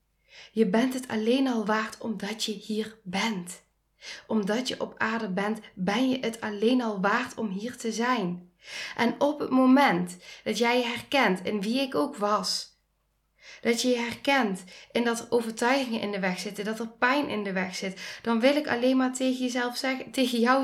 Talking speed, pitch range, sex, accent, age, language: 190 wpm, 205-265 Hz, female, Dutch, 10-29, Dutch